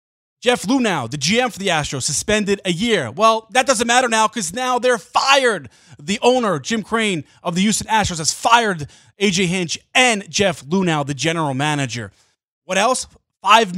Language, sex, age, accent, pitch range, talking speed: English, male, 30-49, American, 150-225 Hz, 175 wpm